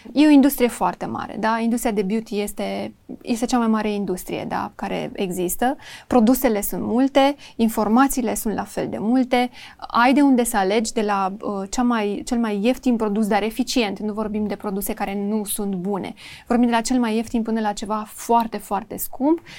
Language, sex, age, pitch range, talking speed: Romanian, female, 20-39, 215-250 Hz, 195 wpm